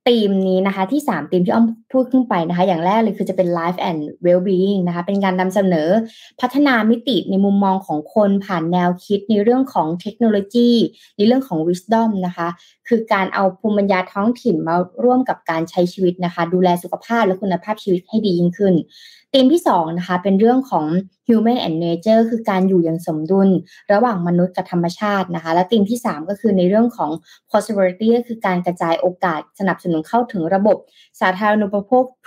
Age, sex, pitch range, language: 20-39, female, 175-225 Hz, Thai